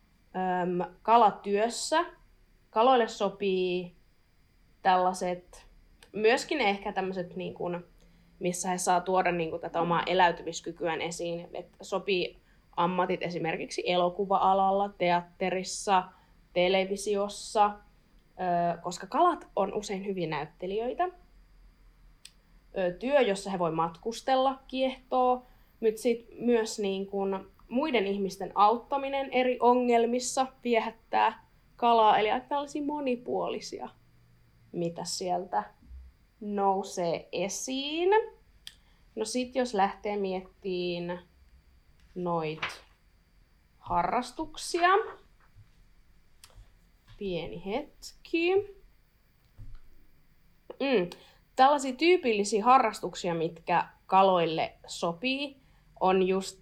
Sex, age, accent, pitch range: female, 20-39, native, 175-235 Hz